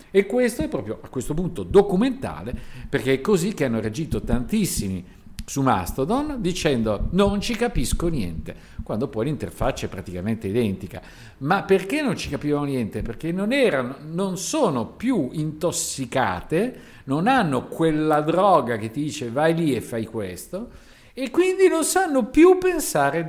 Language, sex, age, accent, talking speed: Italian, male, 50-69, native, 150 wpm